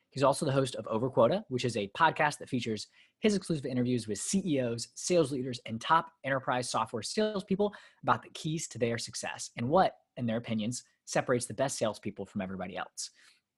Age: 20-39